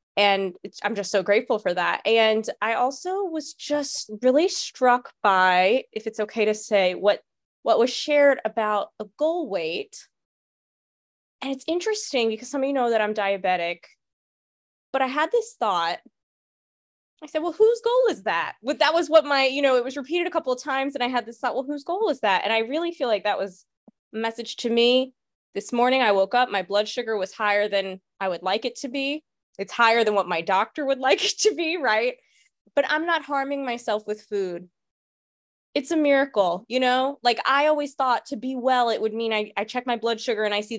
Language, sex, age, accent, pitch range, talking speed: English, female, 20-39, American, 205-275 Hz, 215 wpm